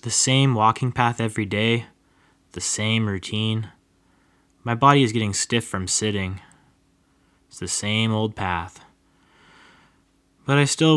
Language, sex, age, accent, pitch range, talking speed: English, male, 10-29, American, 90-120 Hz, 130 wpm